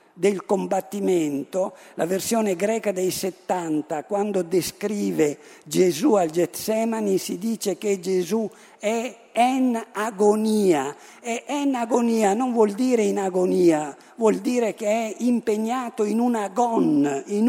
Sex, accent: male, native